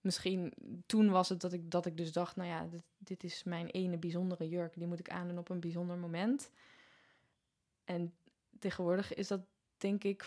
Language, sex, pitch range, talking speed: Dutch, female, 175-200 Hz, 200 wpm